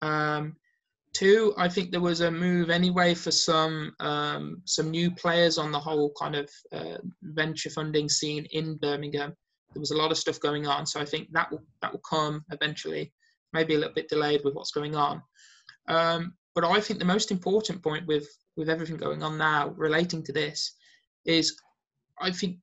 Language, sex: English, male